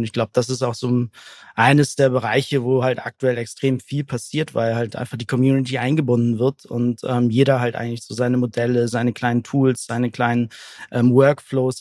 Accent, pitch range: German, 115-130 Hz